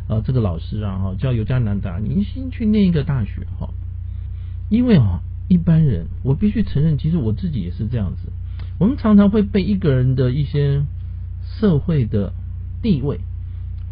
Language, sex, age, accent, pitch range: Chinese, male, 50-69, native, 90-130 Hz